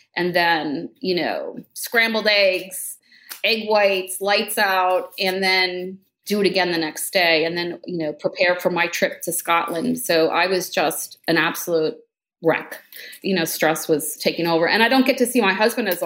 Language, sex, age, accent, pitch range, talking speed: English, female, 30-49, American, 175-205 Hz, 185 wpm